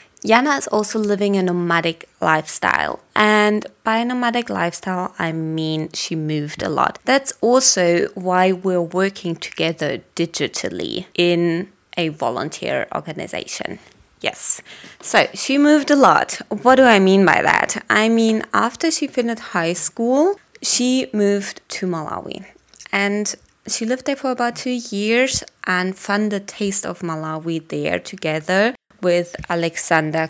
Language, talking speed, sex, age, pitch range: English, 140 wpm, female, 20-39, 170-235 Hz